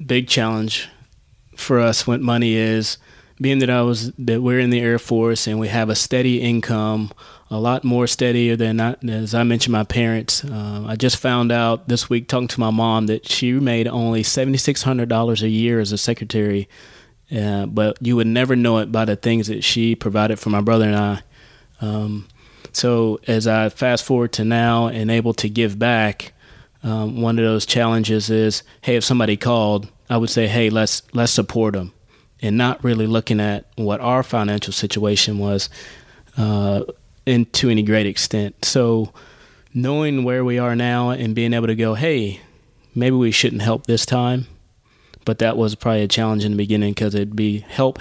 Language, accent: English, American